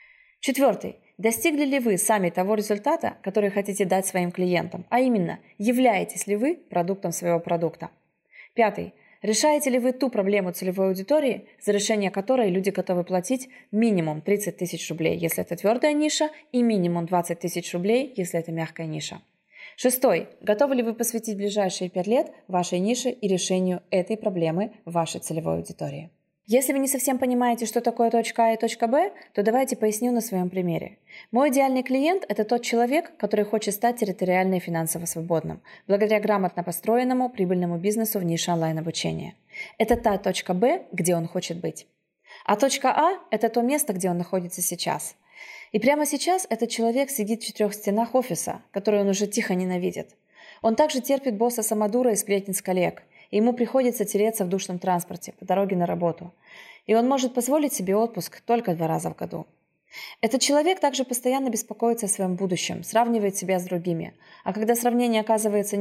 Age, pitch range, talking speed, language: 20-39, 185-245 Hz, 170 wpm, Russian